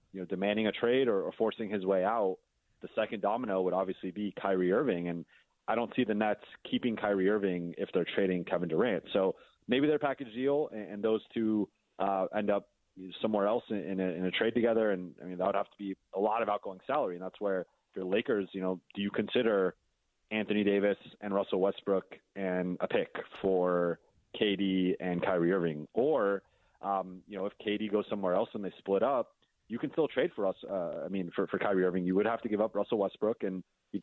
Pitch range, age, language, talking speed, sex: 95-105 Hz, 30-49, English, 220 wpm, male